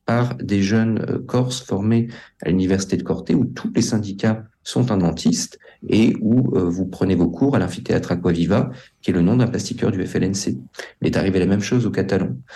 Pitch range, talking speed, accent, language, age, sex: 95-120 Hz, 195 wpm, French, French, 40-59, male